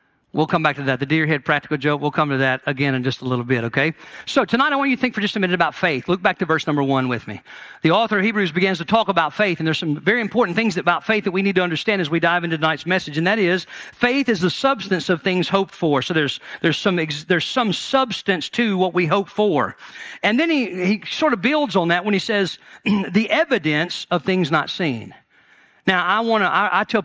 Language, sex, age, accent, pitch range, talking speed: English, male, 50-69, American, 155-210 Hz, 260 wpm